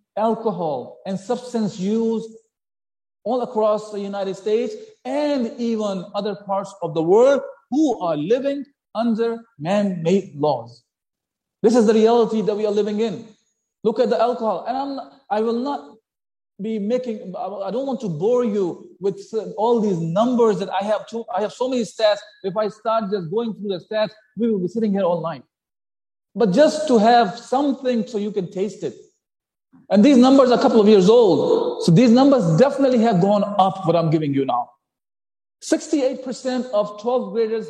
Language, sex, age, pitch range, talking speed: English, male, 50-69, 200-255 Hz, 175 wpm